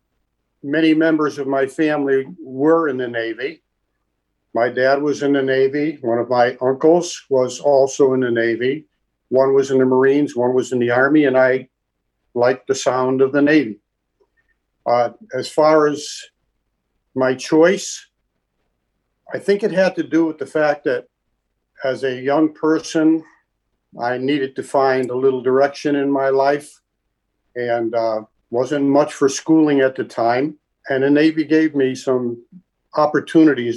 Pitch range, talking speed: 125-150 Hz, 155 wpm